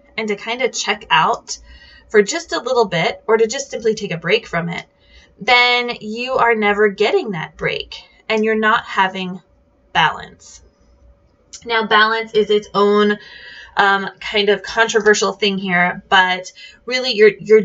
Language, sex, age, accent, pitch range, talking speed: English, female, 20-39, American, 190-235 Hz, 160 wpm